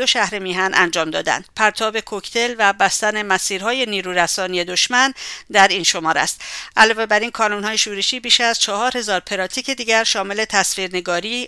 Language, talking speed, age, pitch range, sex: English, 150 wpm, 50-69, 195-230 Hz, female